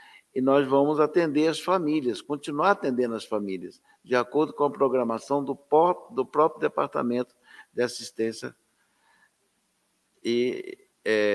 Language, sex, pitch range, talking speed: Portuguese, male, 110-140 Hz, 125 wpm